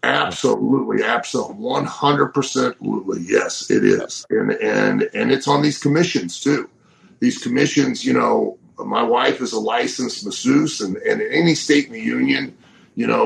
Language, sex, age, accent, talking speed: English, male, 40-59, American, 155 wpm